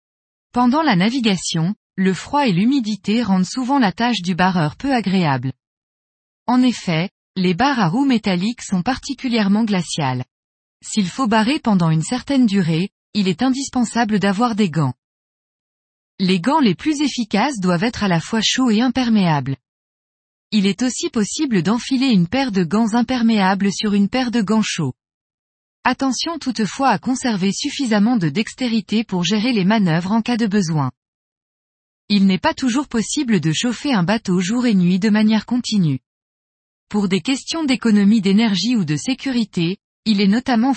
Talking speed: 160 wpm